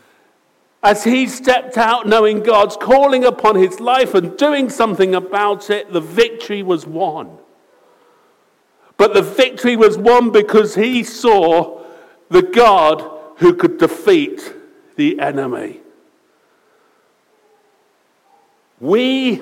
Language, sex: English, male